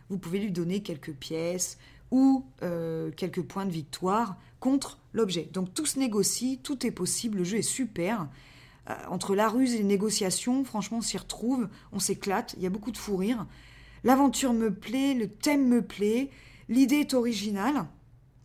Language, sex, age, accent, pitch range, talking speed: French, female, 20-39, French, 185-245 Hz, 180 wpm